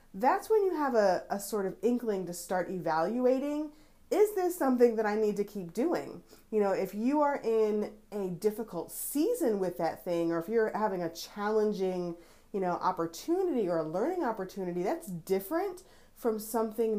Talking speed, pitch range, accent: 175 wpm, 180-245 Hz, American